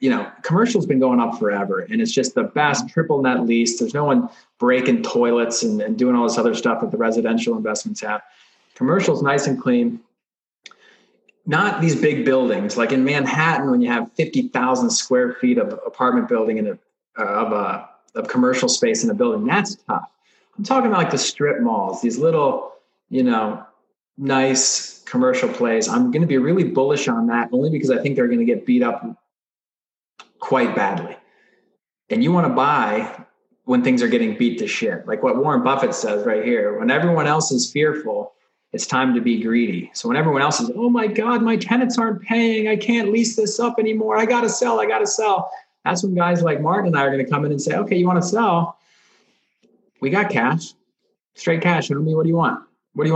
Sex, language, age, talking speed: male, English, 30-49, 210 wpm